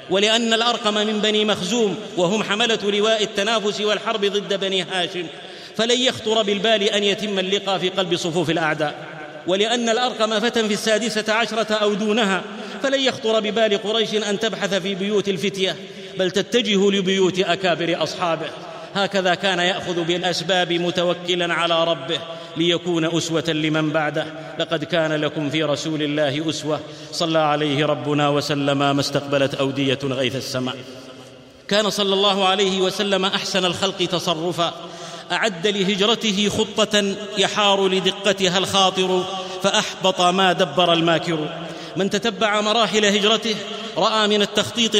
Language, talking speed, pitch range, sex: Arabic, 130 wpm, 170-215 Hz, male